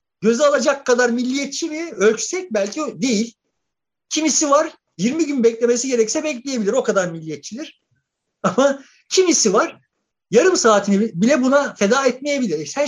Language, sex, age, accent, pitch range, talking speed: Turkish, male, 50-69, native, 185-280 Hz, 135 wpm